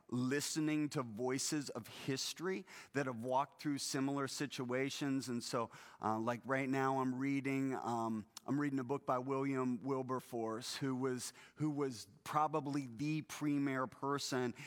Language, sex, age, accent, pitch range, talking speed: English, male, 30-49, American, 130-145 Hz, 145 wpm